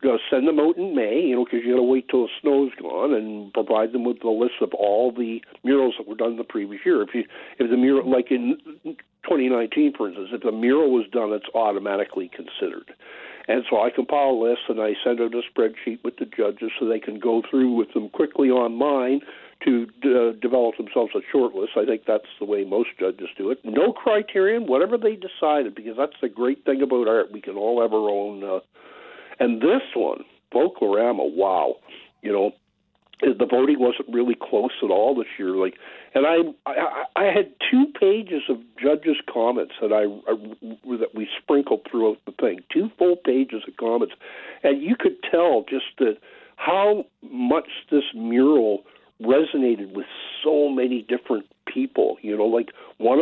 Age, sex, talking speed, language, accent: 60-79, male, 195 wpm, English, American